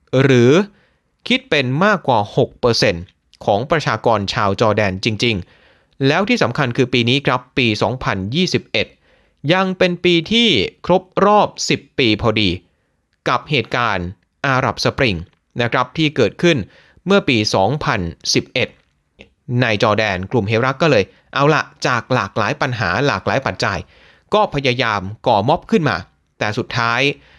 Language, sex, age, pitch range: Thai, male, 30-49, 105-145 Hz